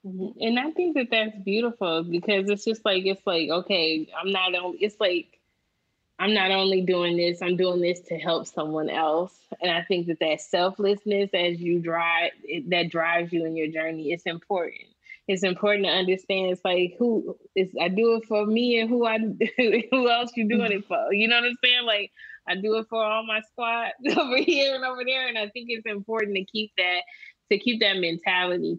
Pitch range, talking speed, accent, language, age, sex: 170-210 Hz, 210 wpm, American, English, 20-39, female